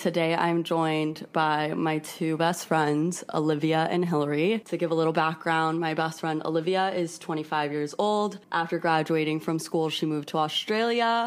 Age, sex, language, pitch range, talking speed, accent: 20-39, female, English, 155-175 Hz, 170 wpm, American